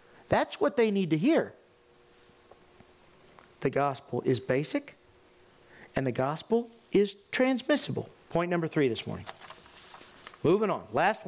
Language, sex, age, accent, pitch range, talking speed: English, male, 40-59, American, 155-245 Hz, 120 wpm